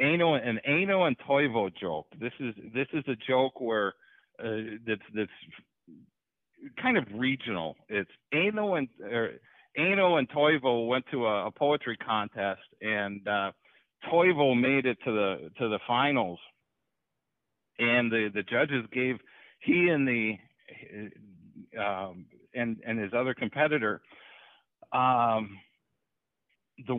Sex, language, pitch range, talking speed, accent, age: male, English, 110-150 Hz, 130 wpm, American, 50-69